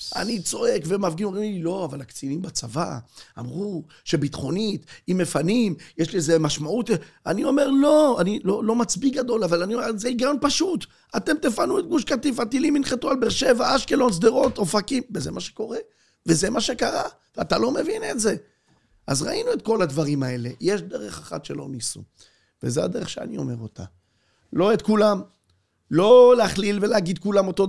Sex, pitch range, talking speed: male, 165-270 Hz, 170 wpm